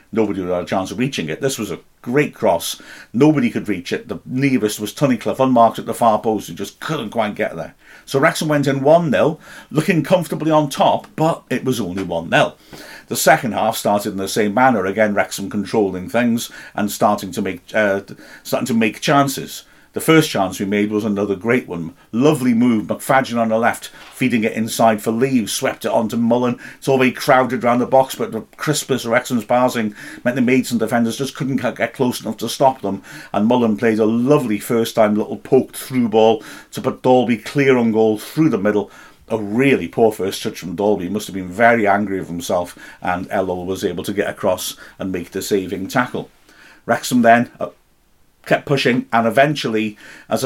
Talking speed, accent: 205 wpm, British